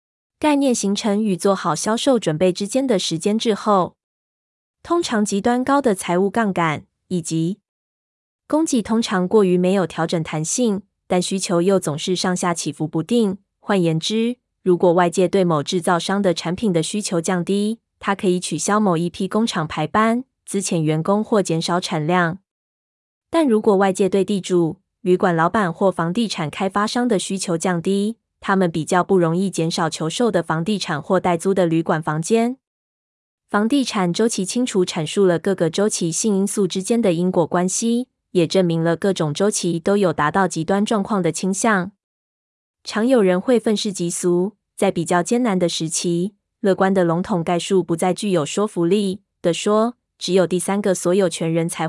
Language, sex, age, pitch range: Chinese, female, 20-39, 175-210 Hz